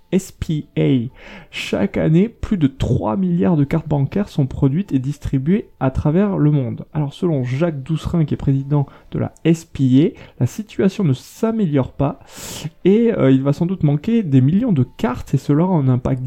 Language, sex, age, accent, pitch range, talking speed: French, male, 20-39, French, 130-170 Hz, 180 wpm